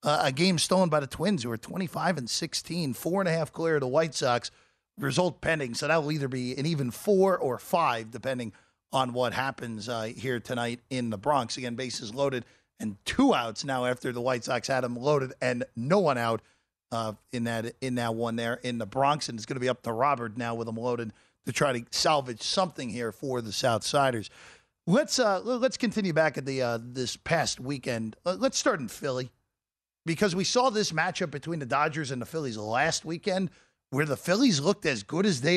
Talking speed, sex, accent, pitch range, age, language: 220 wpm, male, American, 125-170 Hz, 40-59, English